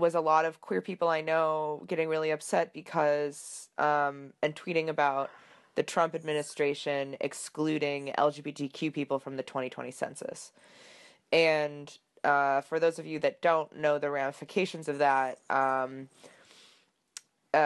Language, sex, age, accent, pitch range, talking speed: English, female, 20-39, American, 140-160 Hz, 135 wpm